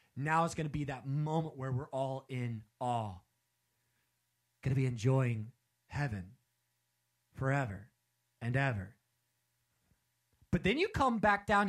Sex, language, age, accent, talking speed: male, English, 30-49, American, 135 wpm